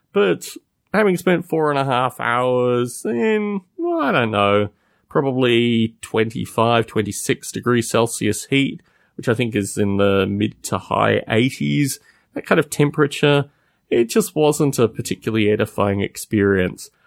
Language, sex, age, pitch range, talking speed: English, male, 30-49, 105-145 Hz, 135 wpm